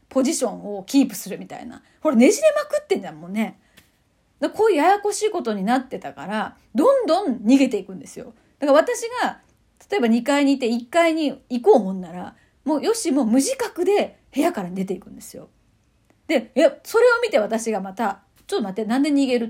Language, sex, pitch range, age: Japanese, female, 220-310 Hz, 40-59